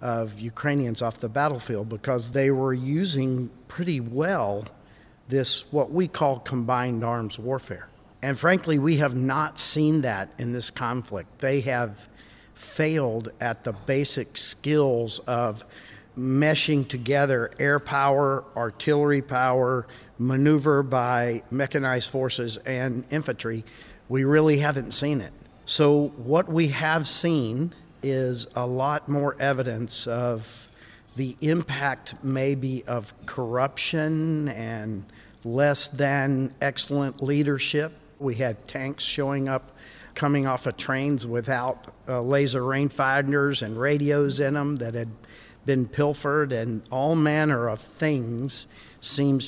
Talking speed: 120 wpm